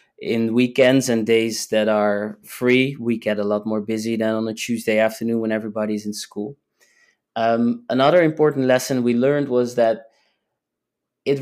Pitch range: 115-135 Hz